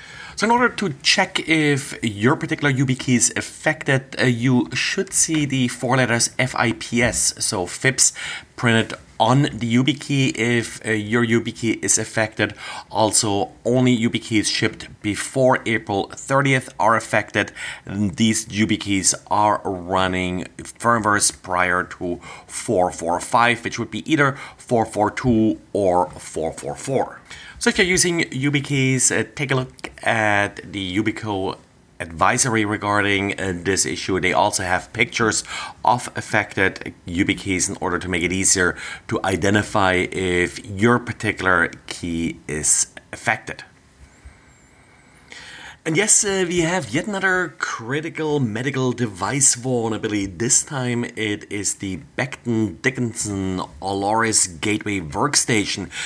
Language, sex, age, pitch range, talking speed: English, male, 30-49, 100-130 Hz, 125 wpm